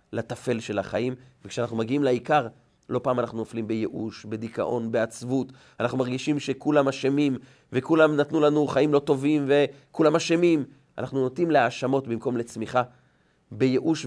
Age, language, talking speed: 40-59, Hebrew, 130 wpm